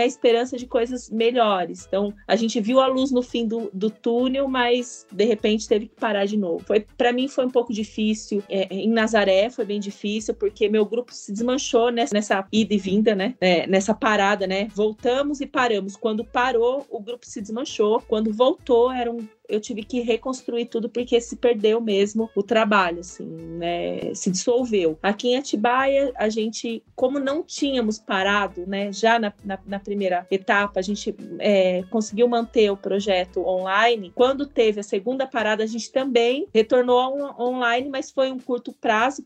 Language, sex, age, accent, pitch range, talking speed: Portuguese, female, 30-49, Brazilian, 205-245 Hz, 180 wpm